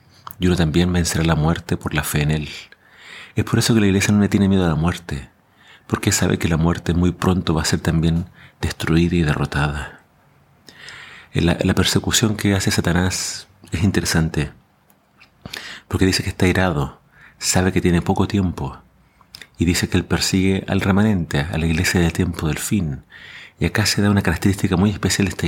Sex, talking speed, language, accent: male, 190 wpm, Spanish, Argentinian